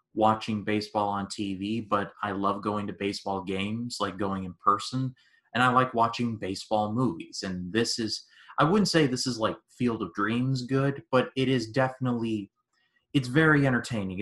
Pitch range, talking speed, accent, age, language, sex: 105-130 Hz, 175 wpm, American, 30-49, English, male